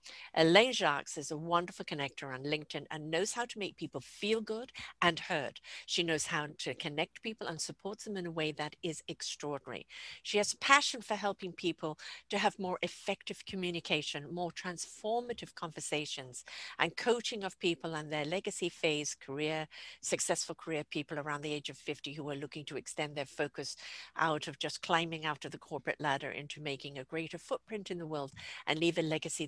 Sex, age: female, 50-69